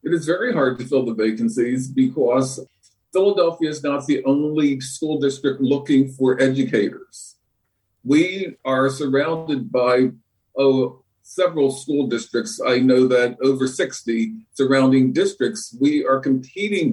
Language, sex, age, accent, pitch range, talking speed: English, male, 50-69, American, 130-145 Hz, 130 wpm